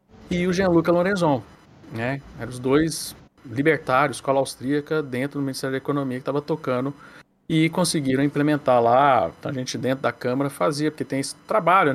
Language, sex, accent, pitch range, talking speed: Portuguese, male, Brazilian, 135-170 Hz, 170 wpm